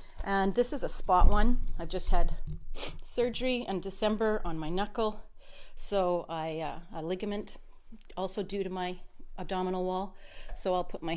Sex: female